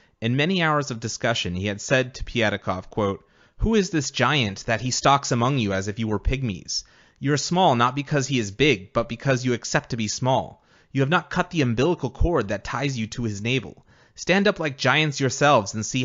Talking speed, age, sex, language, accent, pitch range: 225 wpm, 30-49, male, English, American, 110-140 Hz